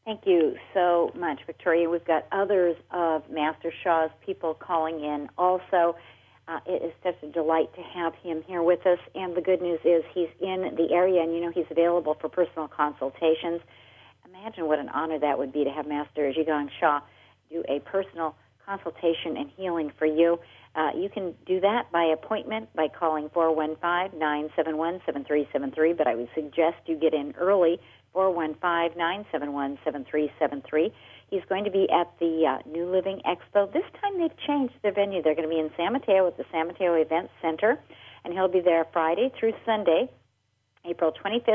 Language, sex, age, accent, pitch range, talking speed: English, female, 50-69, American, 155-190 Hz, 175 wpm